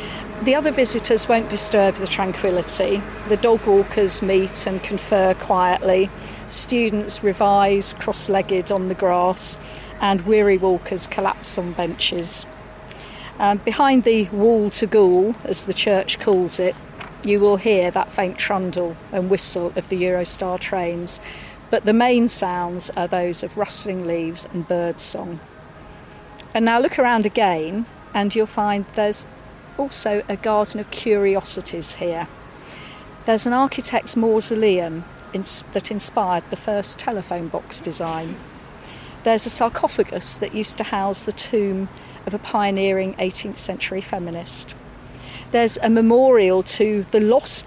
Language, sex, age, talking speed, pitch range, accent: English, female, 40-59, 135 wpm, 185-215 Hz, British